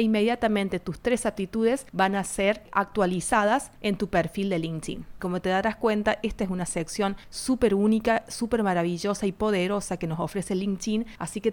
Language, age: Spanish, 30-49